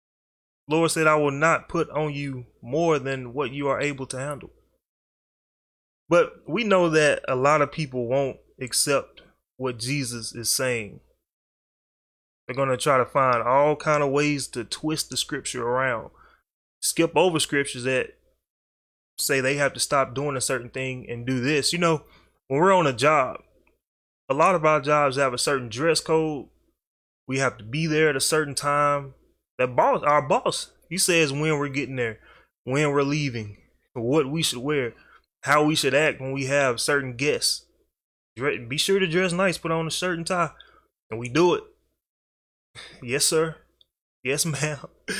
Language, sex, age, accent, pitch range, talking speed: English, male, 20-39, American, 130-160 Hz, 175 wpm